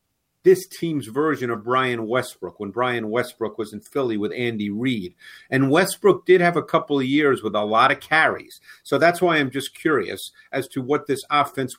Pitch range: 115-145 Hz